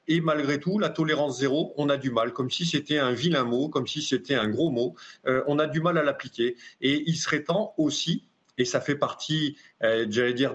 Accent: French